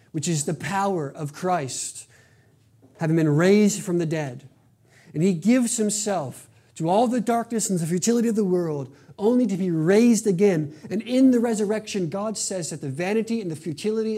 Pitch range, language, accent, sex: 130-180 Hz, English, American, male